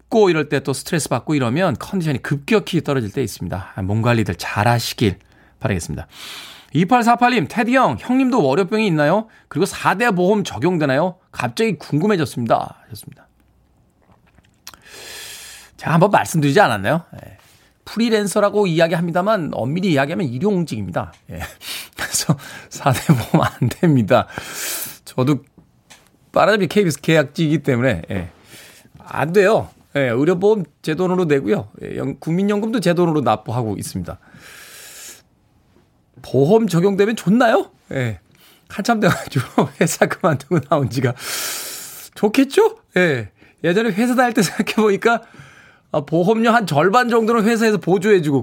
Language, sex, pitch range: Korean, male, 130-205 Hz